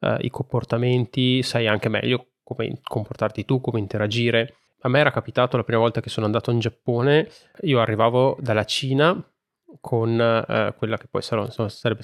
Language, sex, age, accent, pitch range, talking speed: Italian, male, 20-39, native, 115-135 Hz, 155 wpm